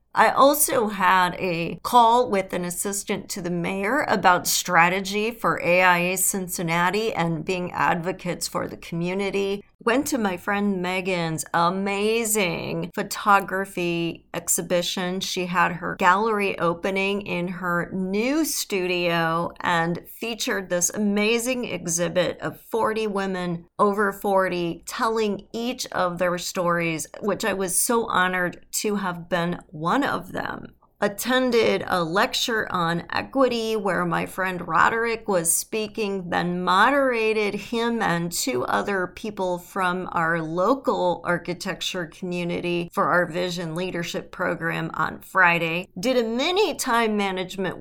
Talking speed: 125 wpm